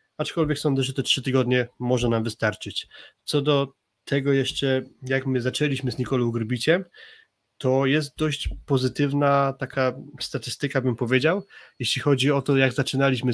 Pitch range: 125-140 Hz